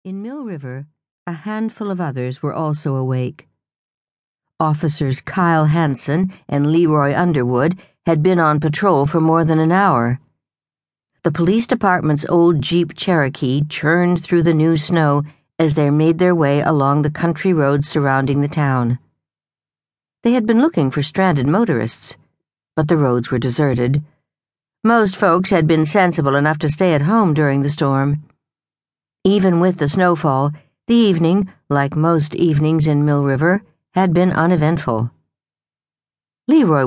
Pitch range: 140-180 Hz